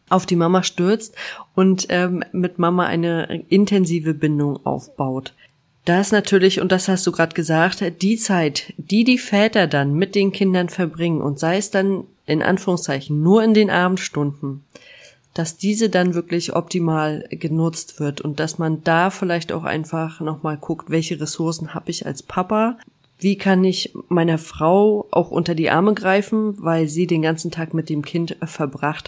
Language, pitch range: German, 160-190 Hz